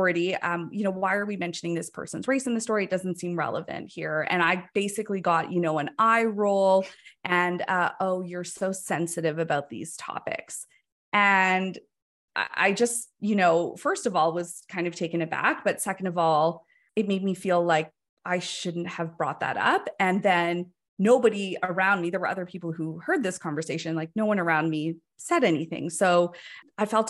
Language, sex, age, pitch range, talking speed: English, female, 20-39, 170-200 Hz, 195 wpm